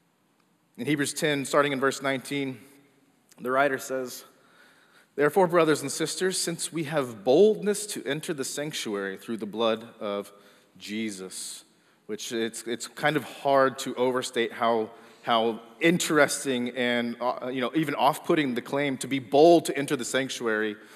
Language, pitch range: English, 120-165 Hz